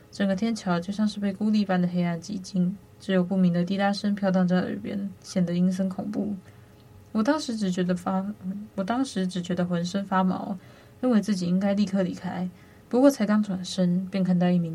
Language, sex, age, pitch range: Chinese, female, 20-39, 180-205 Hz